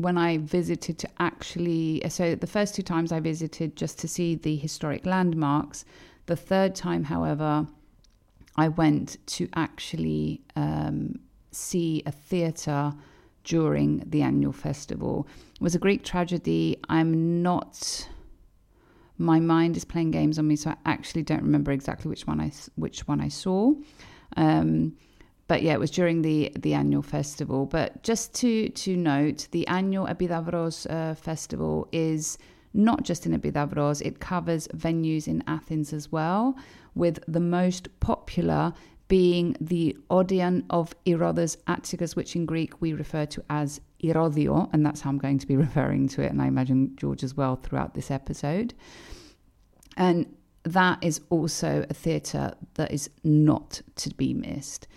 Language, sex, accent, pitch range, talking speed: Greek, female, British, 145-175 Hz, 155 wpm